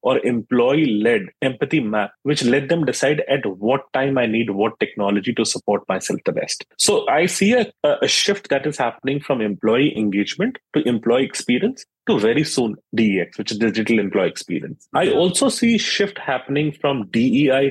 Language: English